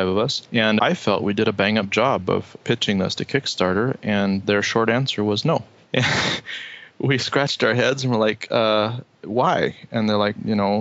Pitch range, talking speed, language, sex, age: 100-115 Hz, 205 wpm, English, male, 20-39